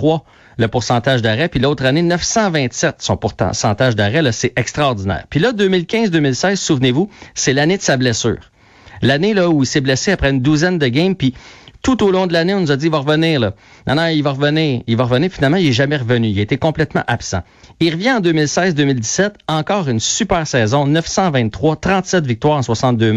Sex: male